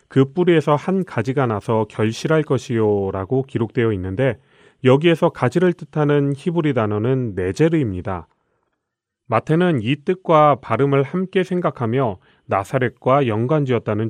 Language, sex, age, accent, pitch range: Korean, male, 30-49, native, 110-160 Hz